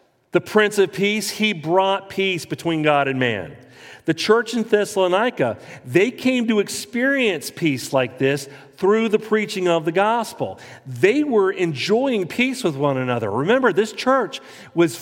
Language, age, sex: English, 40-59, male